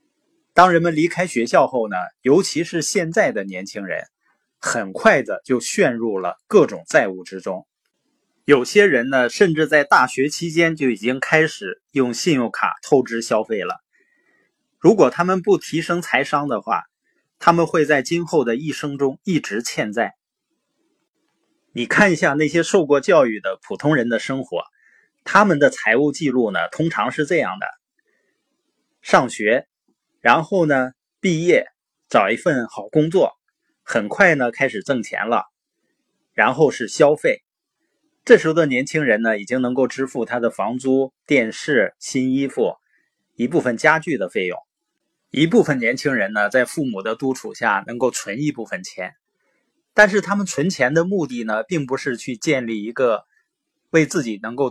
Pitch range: 130-205 Hz